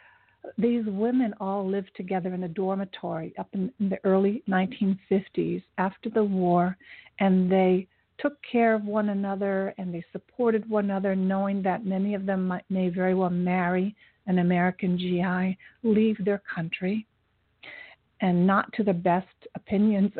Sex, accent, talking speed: female, American, 145 wpm